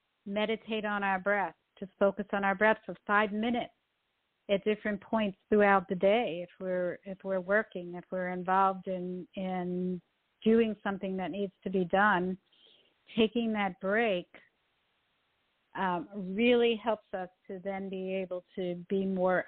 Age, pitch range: 50-69, 185-215 Hz